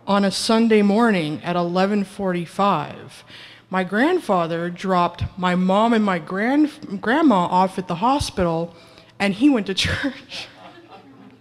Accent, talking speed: American, 120 wpm